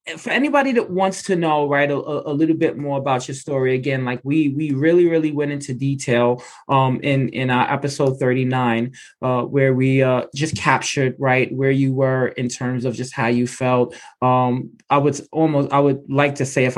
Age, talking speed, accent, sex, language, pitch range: 20-39, 205 wpm, American, male, English, 130-160 Hz